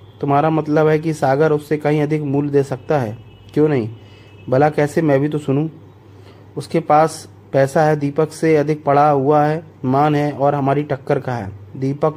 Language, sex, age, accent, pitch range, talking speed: Hindi, male, 30-49, native, 115-155 Hz, 185 wpm